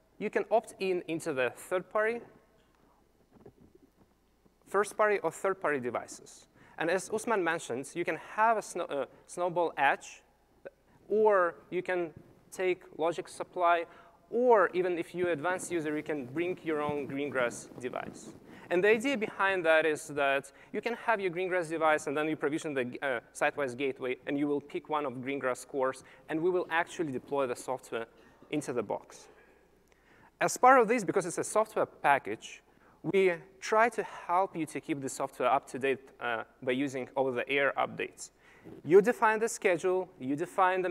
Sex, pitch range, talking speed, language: male, 140-185 Hz, 170 wpm, English